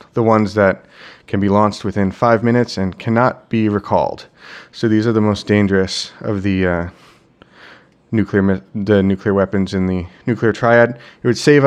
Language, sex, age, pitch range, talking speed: English, male, 30-49, 100-120 Hz, 175 wpm